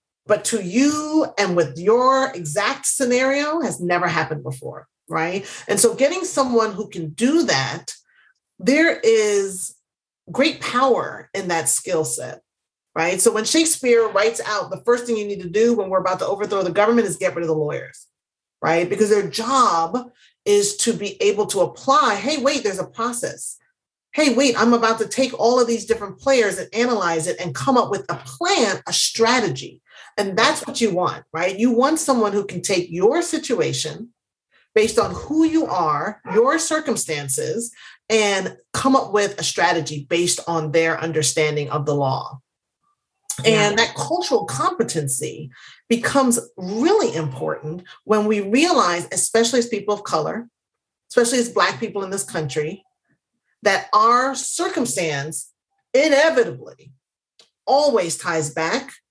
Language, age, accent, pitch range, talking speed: English, 40-59, American, 175-265 Hz, 155 wpm